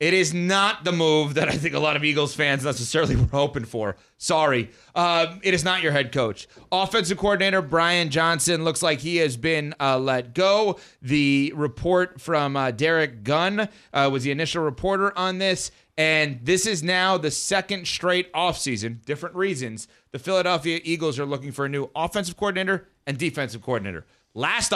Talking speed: 180 wpm